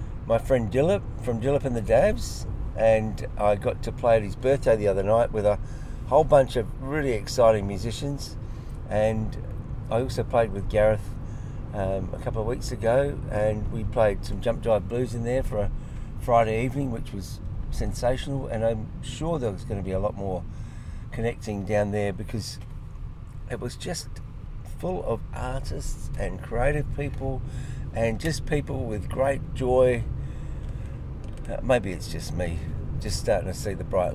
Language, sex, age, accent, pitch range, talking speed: English, male, 50-69, Australian, 105-125 Hz, 165 wpm